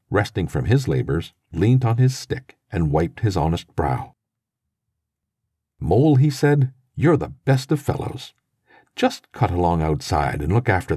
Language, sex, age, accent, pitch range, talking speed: English, male, 50-69, American, 100-135 Hz, 155 wpm